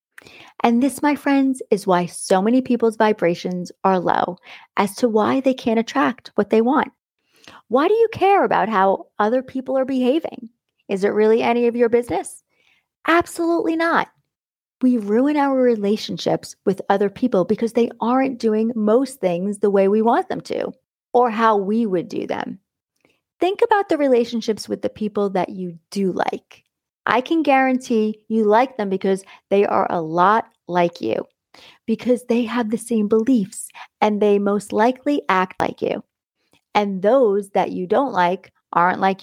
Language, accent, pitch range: English, American, 200-255 Hz